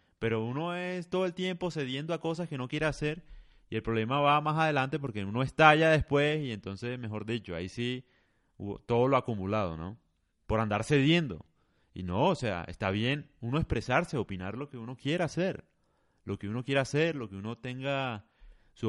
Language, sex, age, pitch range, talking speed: Spanish, male, 30-49, 110-160 Hz, 190 wpm